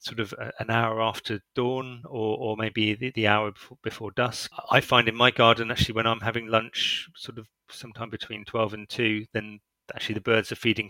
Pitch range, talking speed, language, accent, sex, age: 110-125 Hz, 210 wpm, English, British, male, 30-49